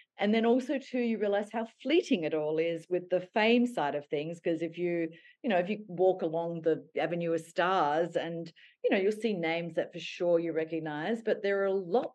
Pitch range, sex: 160-215 Hz, female